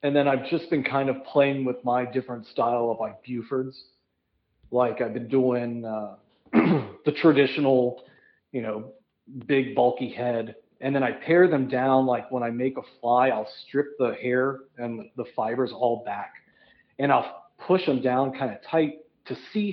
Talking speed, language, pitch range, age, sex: 175 wpm, English, 120-140 Hz, 40-59, male